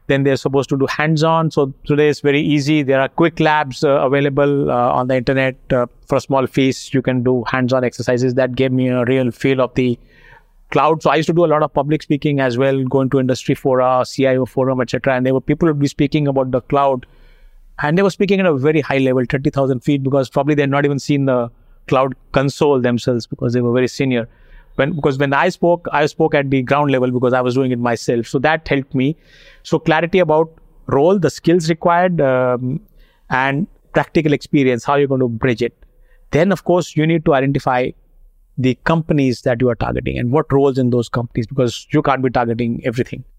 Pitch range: 130-150 Hz